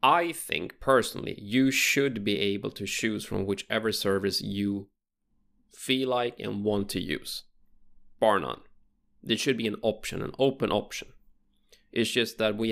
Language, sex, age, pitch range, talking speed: English, male, 20-39, 100-125 Hz, 155 wpm